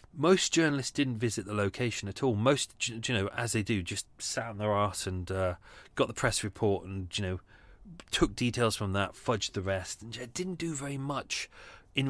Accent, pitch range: British, 100-135 Hz